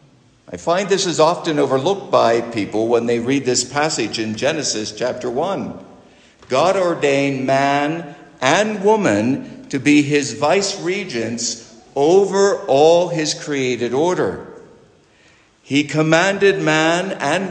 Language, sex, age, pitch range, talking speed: English, male, 60-79, 135-190 Hz, 125 wpm